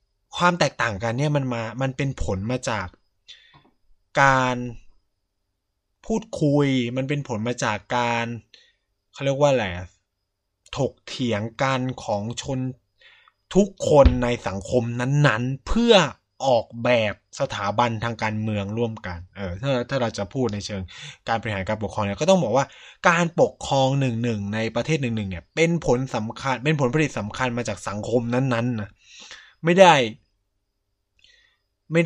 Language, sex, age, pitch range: Thai, male, 20-39, 100-135 Hz